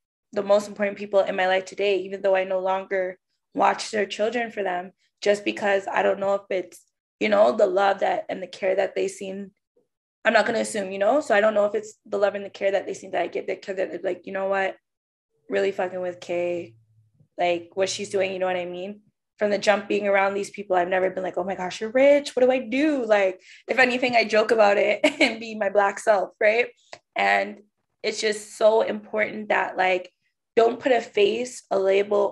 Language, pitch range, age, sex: English, 185-220 Hz, 20-39, female